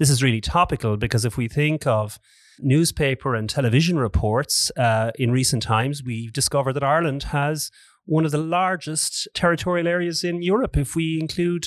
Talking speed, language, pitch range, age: 170 wpm, English, 115-155 Hz, 30-49